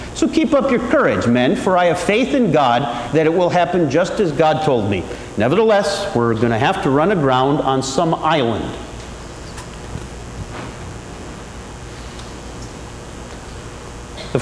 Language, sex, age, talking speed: English, male, 40-59, 135 wpm